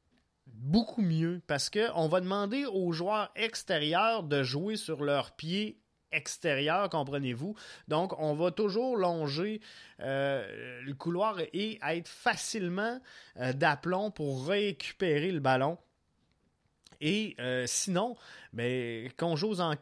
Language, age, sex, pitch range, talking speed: French, 20-39, male, 140-190 Hz, 120 wpm